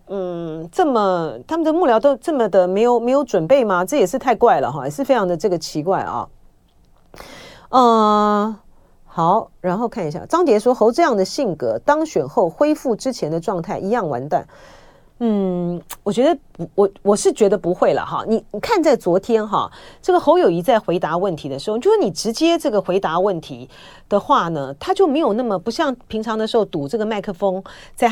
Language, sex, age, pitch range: Chinese, female, 40-59, 180-260 Hz